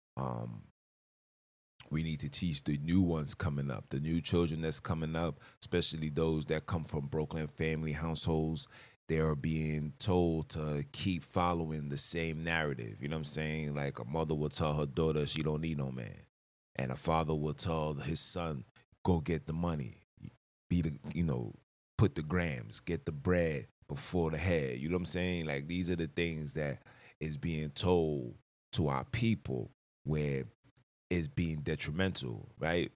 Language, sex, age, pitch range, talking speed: English, male, 20-39, 75-90 Hz, 175 wpm